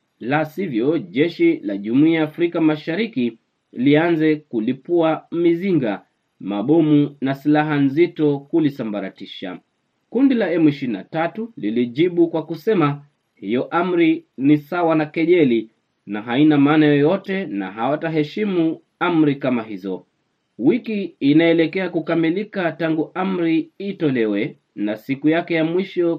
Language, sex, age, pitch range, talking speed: Swahili, male, 30-49, 145-175 Hz, 110 wpm